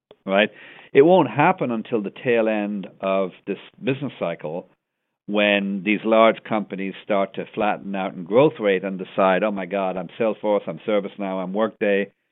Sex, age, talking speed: male, 50-69, 165 wpm